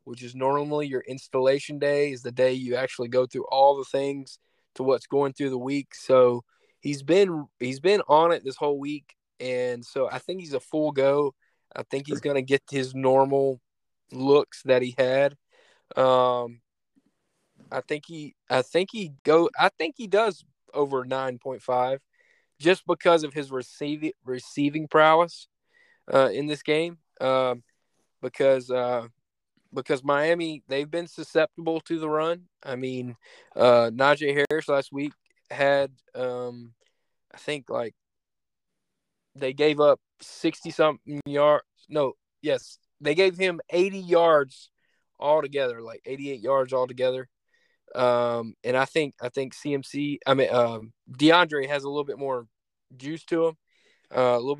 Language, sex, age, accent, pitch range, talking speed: English, male, 20-39, American, 130-155 Hz, 155 wpm